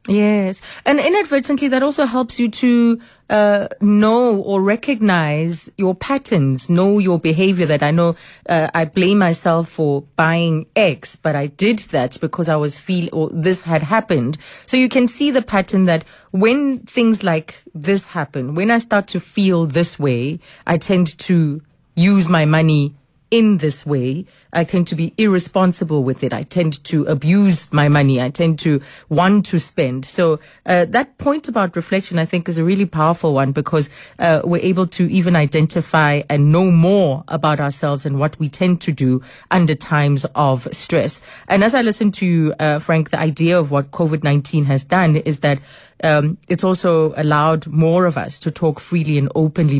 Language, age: English, 30-49